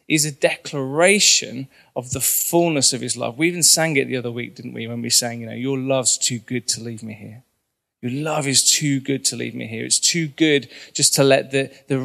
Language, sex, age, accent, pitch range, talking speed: English, male, 20-39, British, 130-155 Hz, 240 wpm